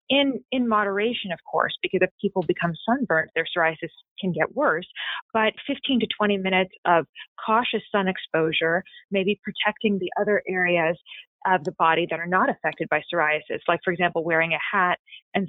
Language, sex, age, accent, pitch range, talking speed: English, female, 20-39, American, 170-210 Hz, 175 wpm